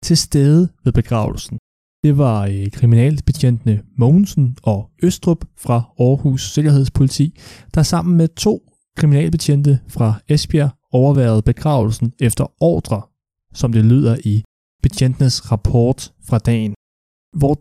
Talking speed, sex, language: 110 wpm, male, Danish